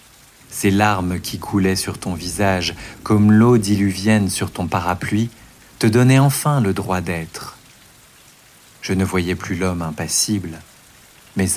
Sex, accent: male, French